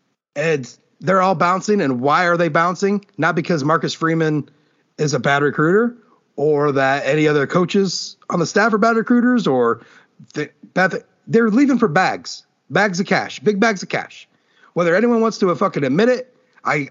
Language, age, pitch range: English, 40-59, 165-230 Hz